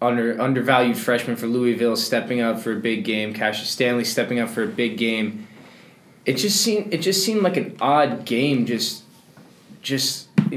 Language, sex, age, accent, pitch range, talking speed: English, male, 20-39, American, 110-150 Hz, 180 wpm